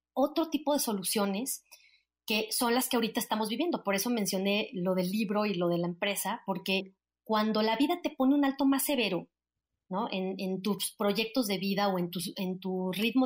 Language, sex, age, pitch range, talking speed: Spanish, female, 30-49, 200-255 Hz, 205 wpm